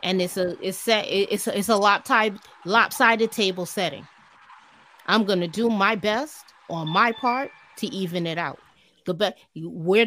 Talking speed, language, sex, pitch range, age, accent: 160 wpm, English, female, 180-225 Hz, 30-49, American